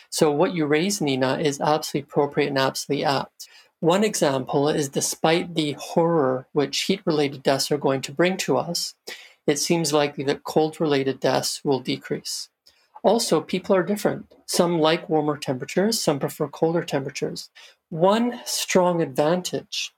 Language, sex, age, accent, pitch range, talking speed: English, male, 40-59, American, 140-165 Hz, 145 wpm